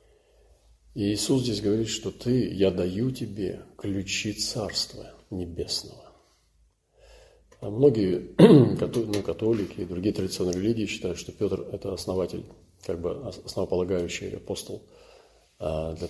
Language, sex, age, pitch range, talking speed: Russian, male, 40-59, 90-105 Hz, 115 wpm